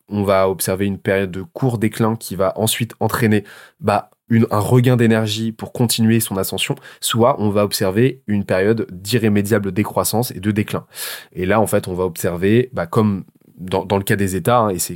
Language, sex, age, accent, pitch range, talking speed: French, male, 20-39, French, 95-115 Hz, 200 wpm